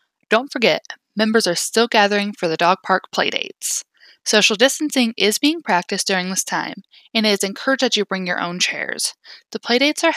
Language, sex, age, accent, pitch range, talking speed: English, female, 10-29, American, 185-250 Hz, 190 wpm